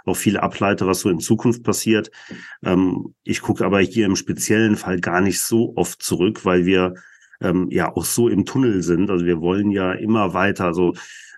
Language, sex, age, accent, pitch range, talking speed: German, male, 40-59, German, 90-110 Hz, 205 wpm